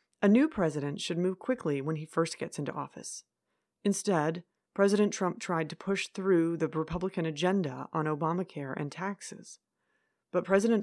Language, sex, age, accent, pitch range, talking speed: English, female, 30-49, American, 155-190 Hz, 155 wpm